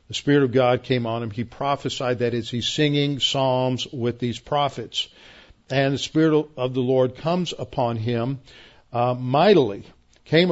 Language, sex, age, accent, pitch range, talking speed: English, male, 50-69, American, 120-140 Hz, 165 wpm